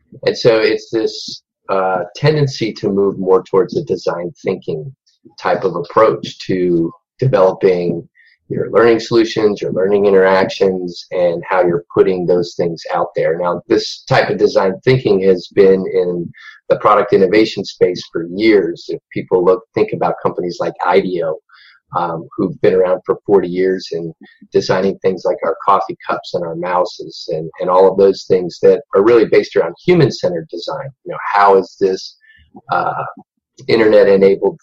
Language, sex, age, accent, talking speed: English, male, 30-49, American, 160 wpm